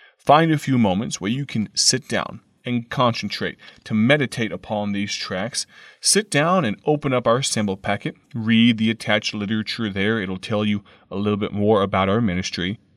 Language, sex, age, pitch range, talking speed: English, male, 30-49, 105-130 Hz, 180 wpm